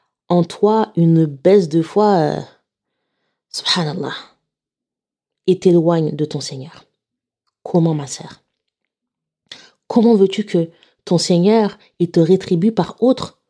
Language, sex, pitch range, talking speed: French, female, 165-220 Hz, 115 wpm